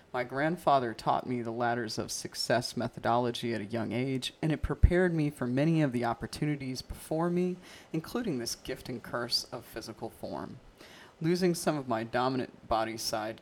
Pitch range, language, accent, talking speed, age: 120-140 Hz, English, American, 170 wpm, 30-49